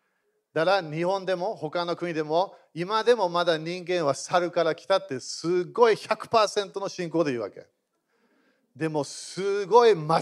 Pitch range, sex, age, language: 155-195 Hz, male, 40-59, Japanese